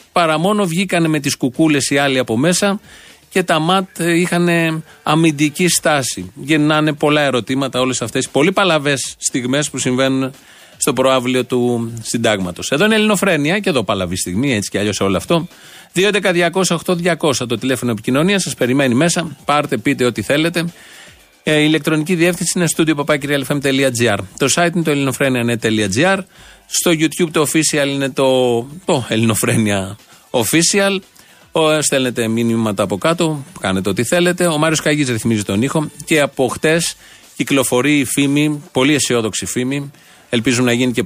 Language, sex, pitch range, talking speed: Greek, male, 120-165 Hz, 145 wpm